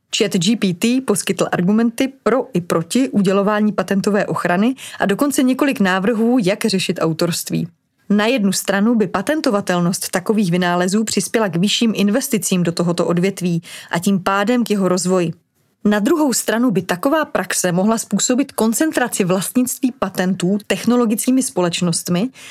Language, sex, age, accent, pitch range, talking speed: Czech, female, 30-49, native, 180-230 Hz, 135 wpm